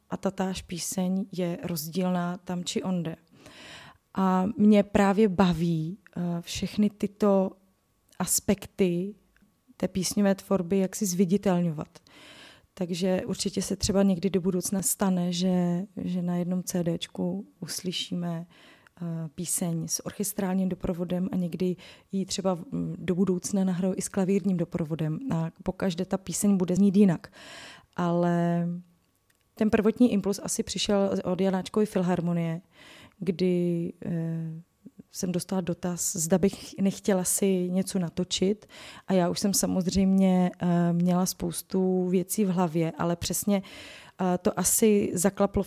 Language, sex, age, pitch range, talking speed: Czech, female, 20-39, 175-200 Hz, 120 wpm